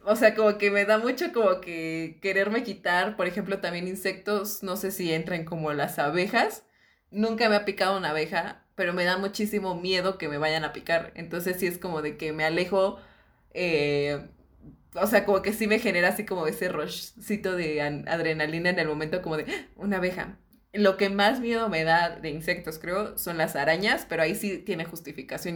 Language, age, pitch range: Spanish, 20-39, 160-195 Hz